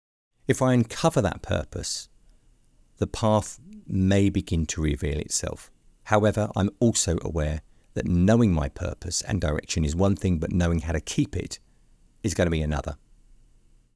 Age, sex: 50-69, male